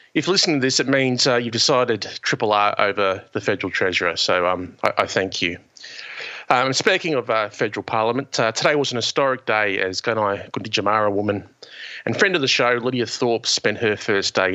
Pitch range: 100-125 Hz